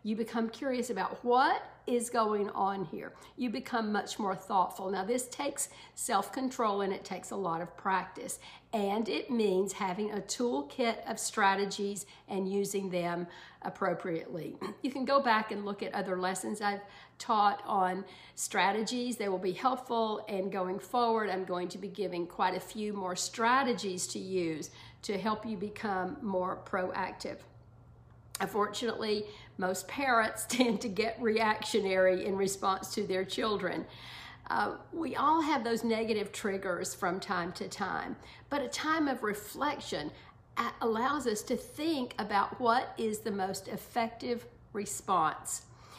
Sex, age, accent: female, 50-69, American